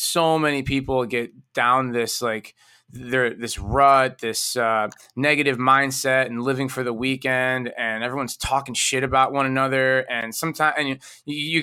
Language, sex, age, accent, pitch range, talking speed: English, male, 20-39, American, 120-140 Hz, 160 wpm